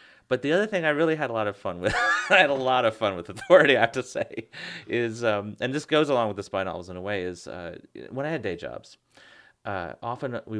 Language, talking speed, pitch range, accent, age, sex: English, 265 wpm, 95-120 Hz, American, 30-49, male